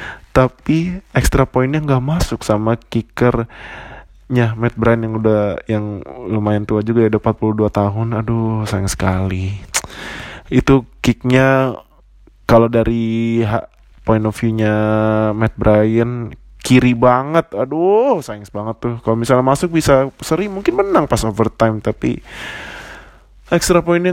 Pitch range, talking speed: 110-130 Hz, 125 wpm